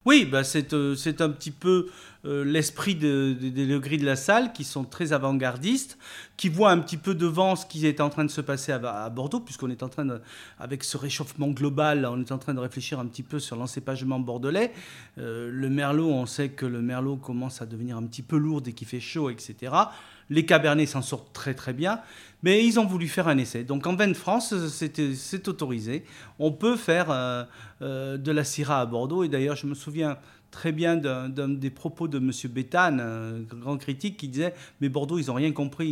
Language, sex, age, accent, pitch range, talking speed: French, male, 40-59, French, 130-165 Hz, 230 wpm